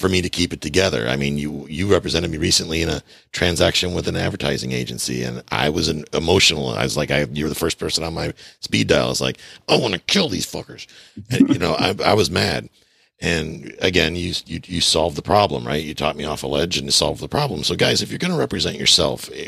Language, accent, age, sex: English, American, 50-69, male